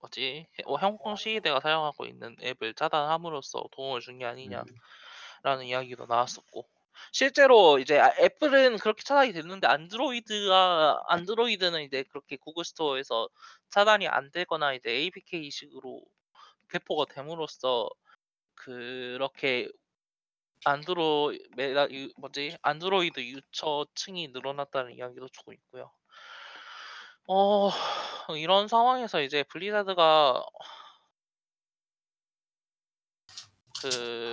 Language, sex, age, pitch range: Korean, male, 20-39, 130-195 Hz